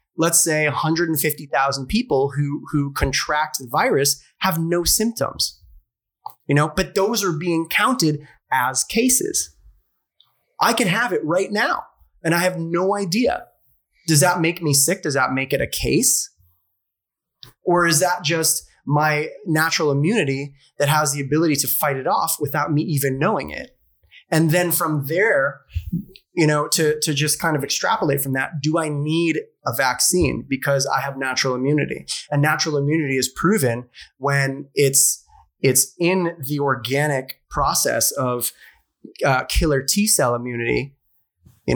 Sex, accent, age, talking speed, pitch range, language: male, American, 20-39, 150 wpm, 135-165 Hz, English